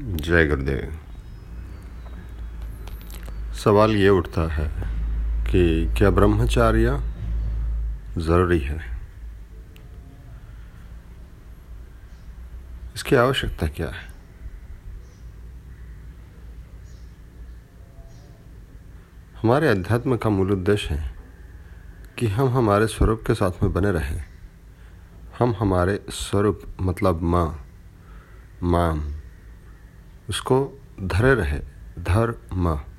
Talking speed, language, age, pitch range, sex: 75 wpm, Hindi, 50-69, 75-105 Hz, male